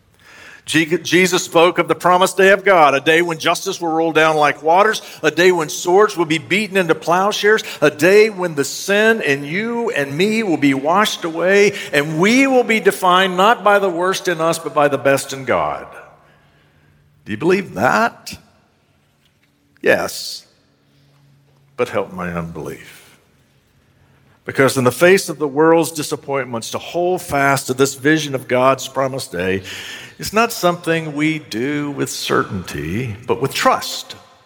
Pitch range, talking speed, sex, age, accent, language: 110-170 Hz, 160 wpm, male, 60-79, American, English